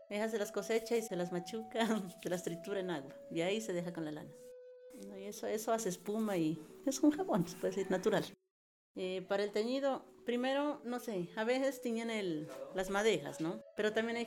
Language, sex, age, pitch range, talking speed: English, female, 40-59, 185-245 Hz, 200 wpm